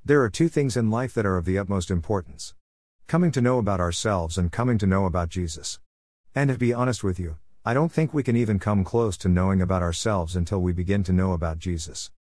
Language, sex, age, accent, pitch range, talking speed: English, male, 50-69, American, 90-115 Hz, 235 wpm